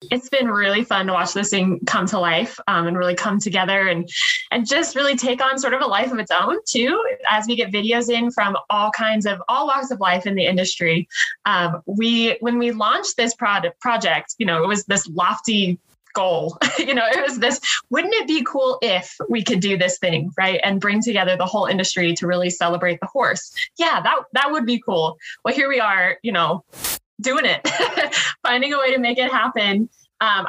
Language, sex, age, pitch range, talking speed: English, female, 20-39, 185-250 Hz, 215 wpm